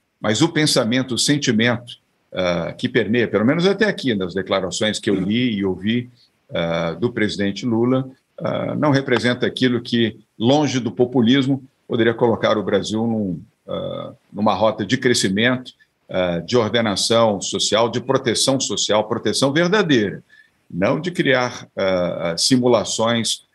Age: 50-69